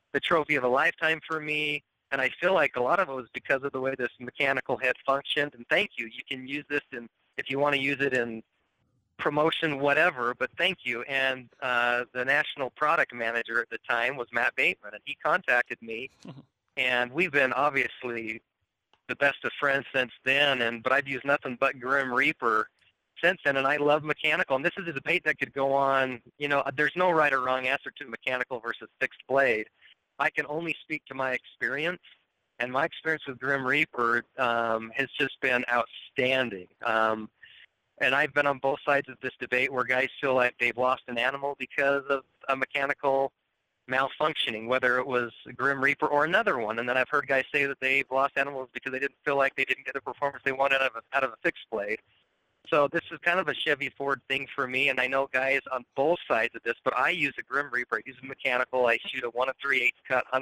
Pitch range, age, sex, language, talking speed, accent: 125-145 Hz, 40-59, male, English, 215 wpm, American